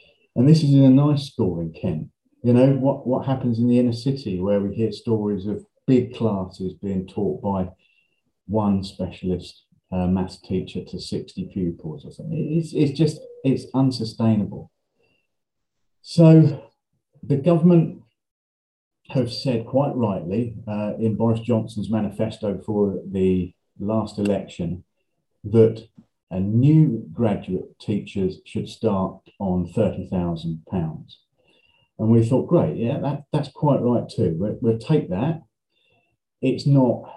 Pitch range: 100-135 Hz